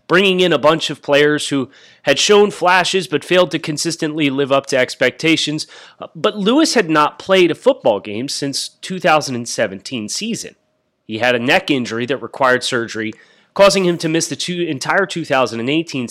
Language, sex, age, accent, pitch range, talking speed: English, male, 30-49, American, 120-180 Hz, 170 wpm